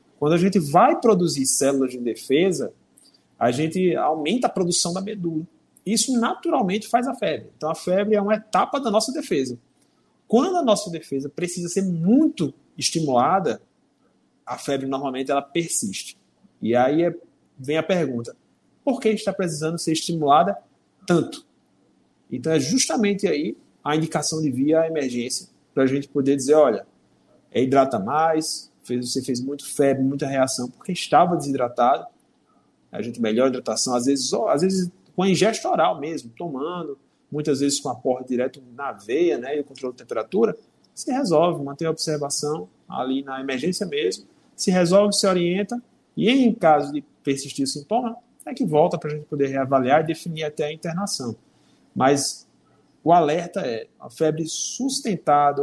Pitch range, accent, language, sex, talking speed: 140-195 Hz, Brazilian, Portuguese, male, 165 wpm